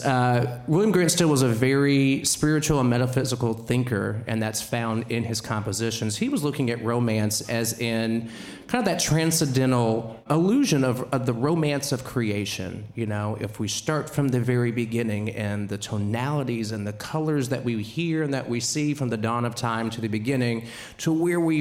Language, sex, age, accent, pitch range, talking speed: English, male, 40-59, American, 110-130 Hz, 190 wpm